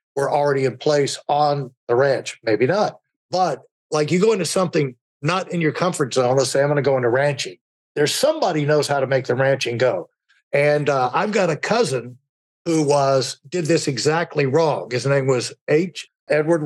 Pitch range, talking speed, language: 135-170 Hz, 190 wpm, English